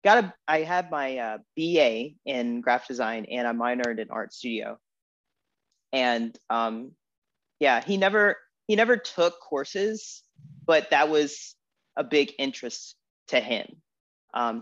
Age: 30-49